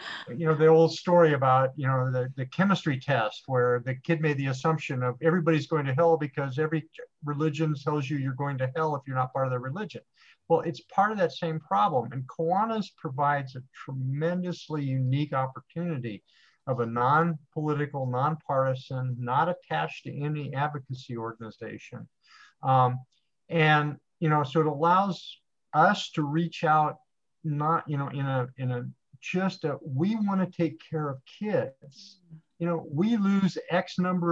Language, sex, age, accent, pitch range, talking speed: English, male, 50-69, American, 130-165 Hz, 165 wpm